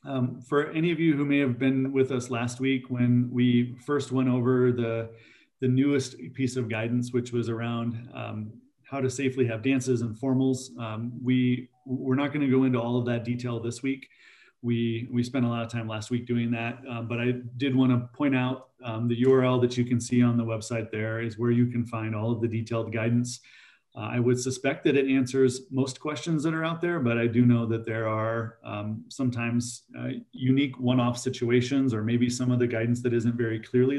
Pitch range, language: 115-130 Hz, English